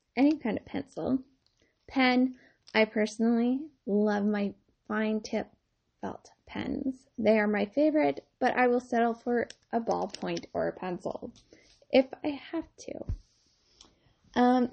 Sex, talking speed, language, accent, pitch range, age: female, 130 wpm, English, American, 210-260 Hz, 10-29